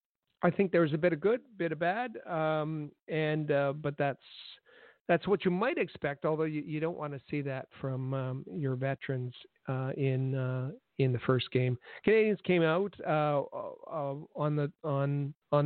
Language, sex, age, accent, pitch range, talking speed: English, male, 50-69, American, 135-165 Hz, 185 wpm